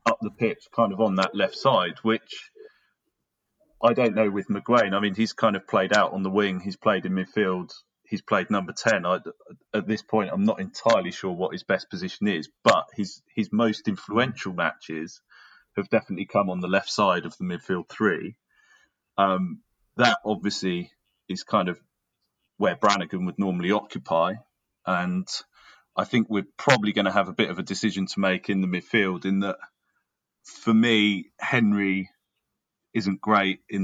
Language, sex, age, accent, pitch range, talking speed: English, male, 30-49, British, 95-110 Hz, 175 wpm